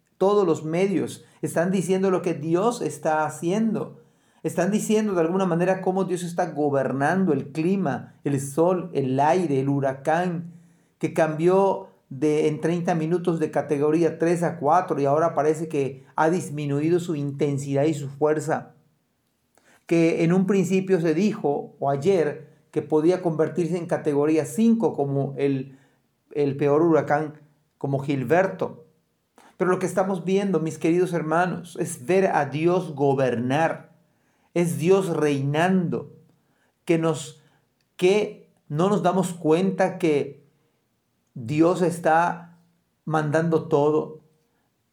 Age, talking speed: 40-59, 130 wpm